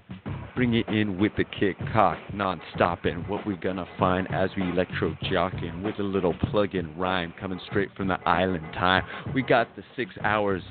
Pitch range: 95-110 Hz